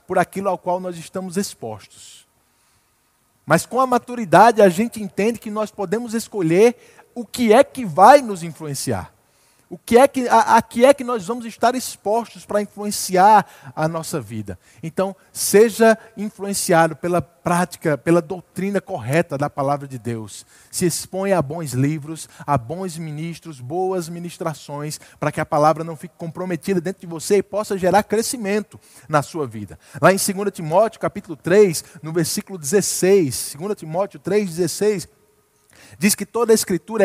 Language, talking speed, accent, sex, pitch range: Portuguese, 160 wpm, Brazilian, male, 160-210 Hz